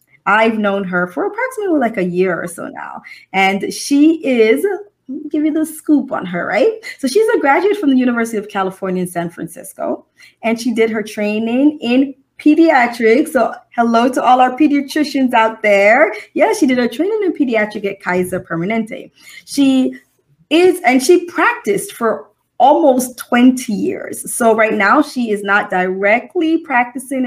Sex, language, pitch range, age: female, English, 215-280 Hz, 20-39